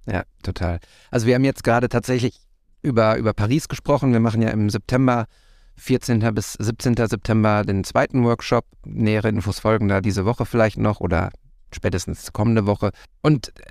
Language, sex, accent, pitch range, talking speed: German, male, German, 105-125 Hz, 160 wpm